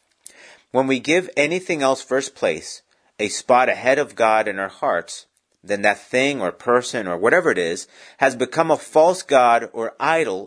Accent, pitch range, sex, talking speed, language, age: American, 110-150 Hz, male, 180 wpm, English, 40-59